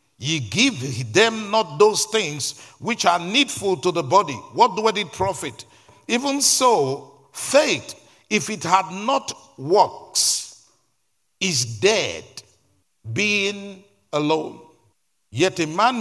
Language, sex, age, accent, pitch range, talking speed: English, male, 50-69, Nigerian, 120-190 Hz, 115 wpm